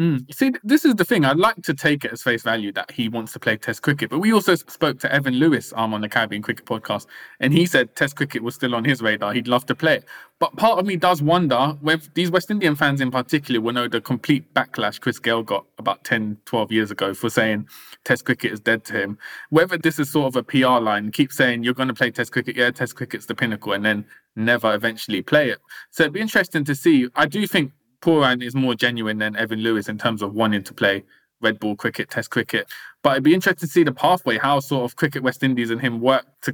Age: 20-39